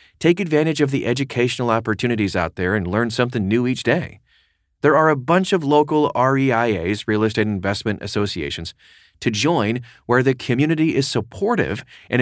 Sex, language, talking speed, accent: male, English, 160 wpm, American